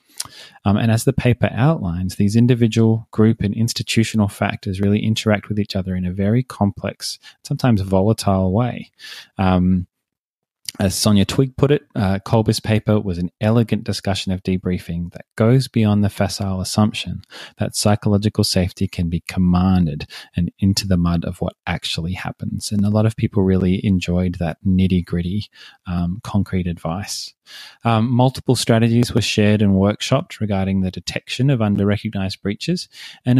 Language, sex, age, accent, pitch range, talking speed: English, male, 20-39, Australian, 95-115 Hz, 150 wpm